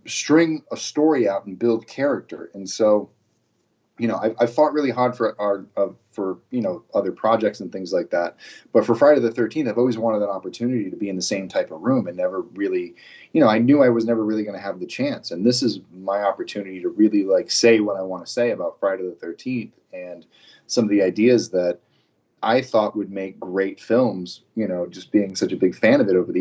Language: English